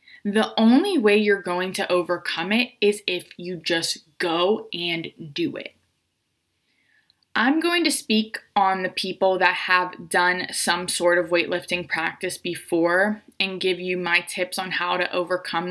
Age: 20-39